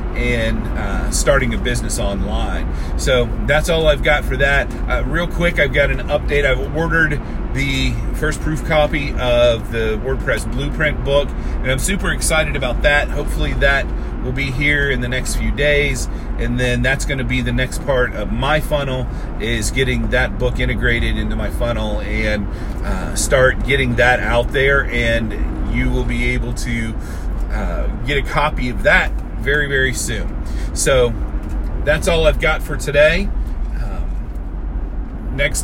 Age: 40-59